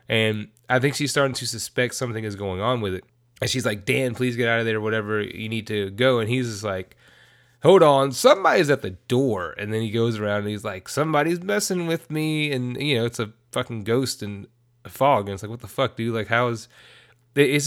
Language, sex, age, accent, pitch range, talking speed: English, male, 20-39, American, 105-135 Hz, 240 wpm